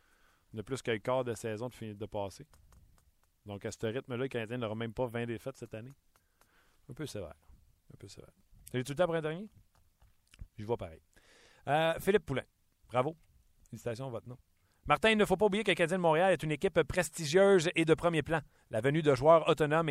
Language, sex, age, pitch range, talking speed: French, male, 40-59, 110-150 Hz, 210 wpm